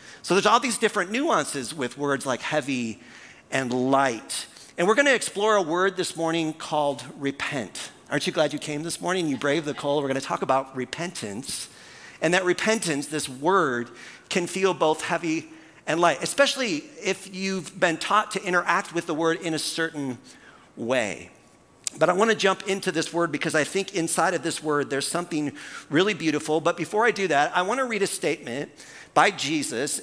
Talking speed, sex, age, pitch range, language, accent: 185 wpm, male, 50-69, 145-185 Hz, English, American